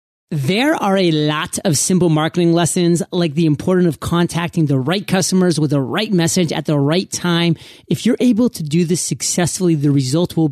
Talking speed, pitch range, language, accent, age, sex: 195 wpm, 150-180 Hz, English, American, 30-49, male